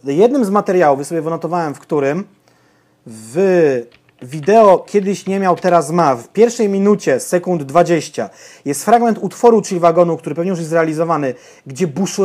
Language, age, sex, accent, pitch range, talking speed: Portuguese, 30-49, male, Polish, 160-200 Hz, 150 wpm